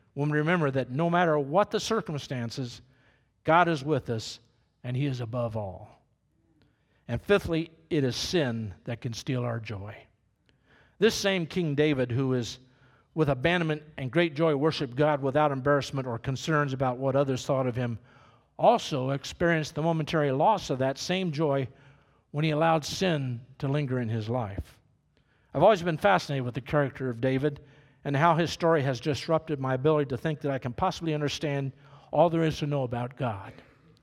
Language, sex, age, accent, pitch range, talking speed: English, male, 50-69, American, 130-160 Hz, 175 wpm